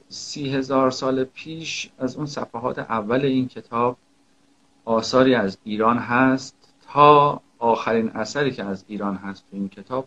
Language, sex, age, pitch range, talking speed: Persian, male, 50-69, 105-135 Hz, 145 wpm